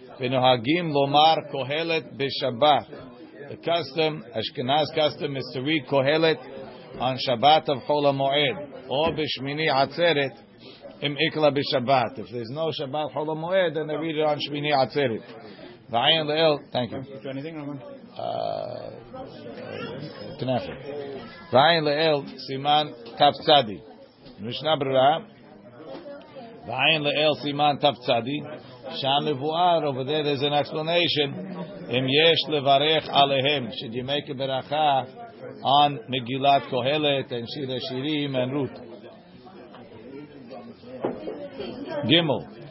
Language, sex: English, male